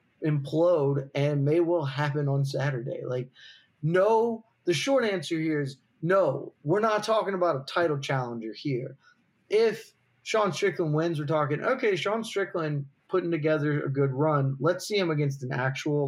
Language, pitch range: English, 135-170 Hz